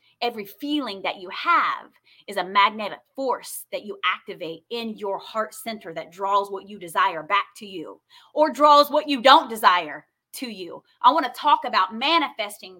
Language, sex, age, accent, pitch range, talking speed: English, female, 20-39, American, 195-280 Hz, 180 wpm